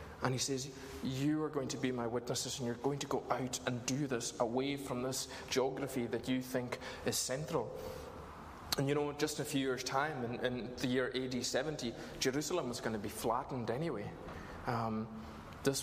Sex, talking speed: male, 195 wpm